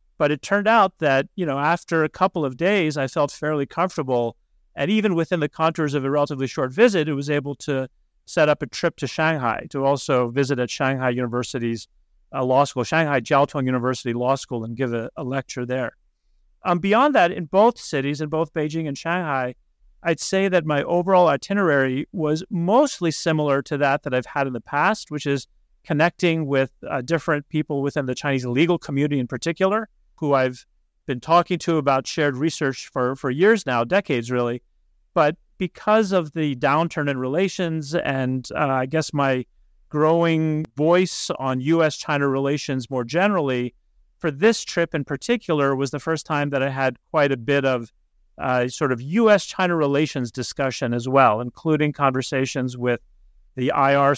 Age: 40-59